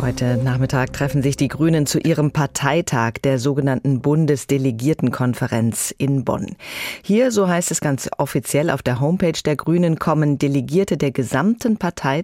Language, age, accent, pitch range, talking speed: German, 30-49, German, 140-195 Hz, 145 wpm